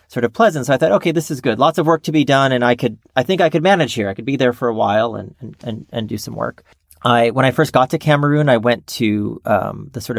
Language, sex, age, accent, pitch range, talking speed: English, male, 40-59, American, 110-145 Hz, 300 wpm